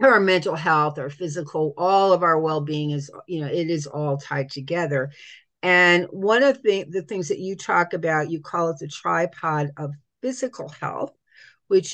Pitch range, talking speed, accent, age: 160-200 Hz, 185 wpm, American, 50-69